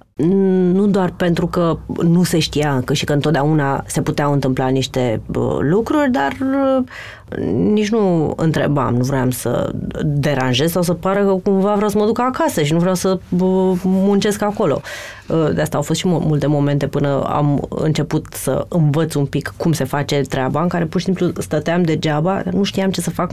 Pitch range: 145-190 Hz